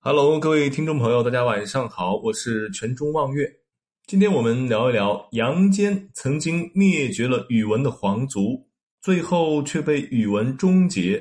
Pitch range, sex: 120-185 Hz, male